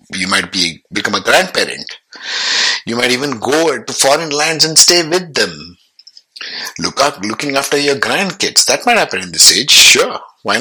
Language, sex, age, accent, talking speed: English, male, 60-79, Indian, 175 wpm